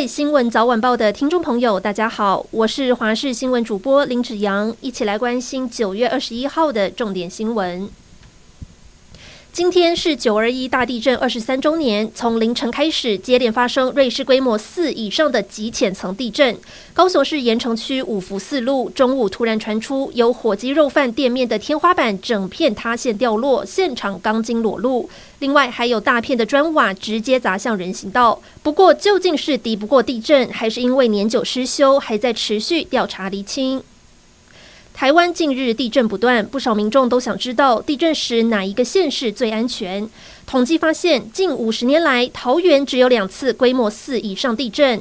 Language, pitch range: Chinese, 220-275 Hz